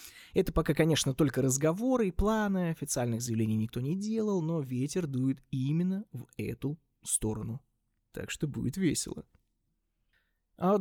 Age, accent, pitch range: 20-39, native, 120-160 Hz